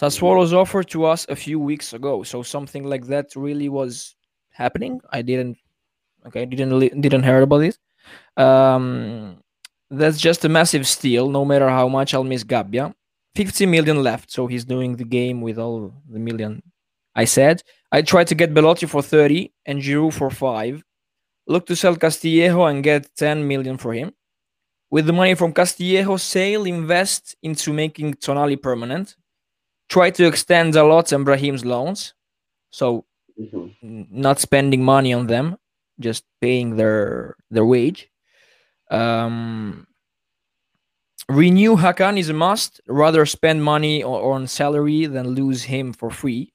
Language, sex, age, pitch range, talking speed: English, male, 20-39, 125-165 Hz, 150 wpm